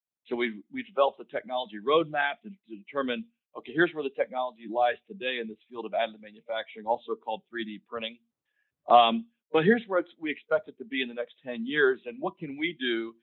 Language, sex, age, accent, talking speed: English, male, 50-69, American, 215 wpm